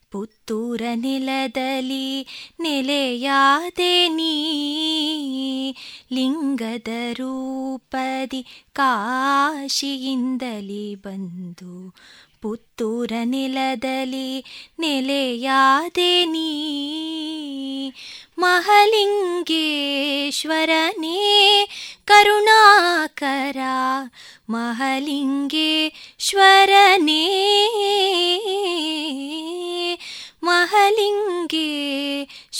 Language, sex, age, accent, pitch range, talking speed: Kannada, female, 20-39, native, 275-365 Hz, 30 wpm